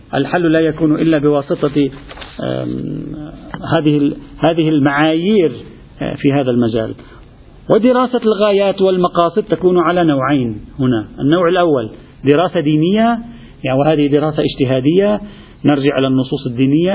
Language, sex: Arabic, male